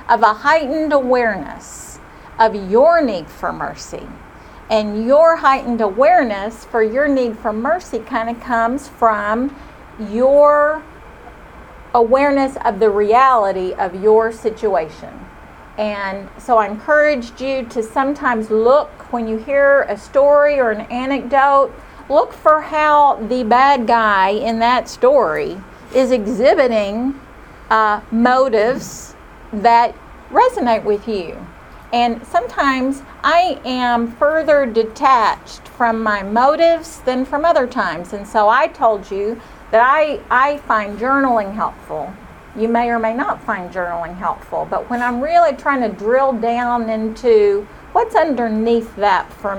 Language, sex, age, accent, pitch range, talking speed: English, female, 50-69, American, 220-280 Hz, 130 wpm